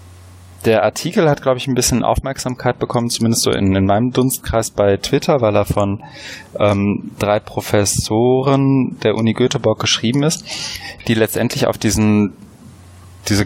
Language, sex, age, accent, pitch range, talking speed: German, male, 20-39, German, 100-120 Hz, 145 wpm